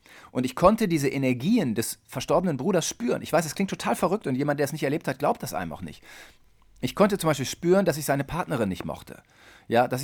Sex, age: male, 40-59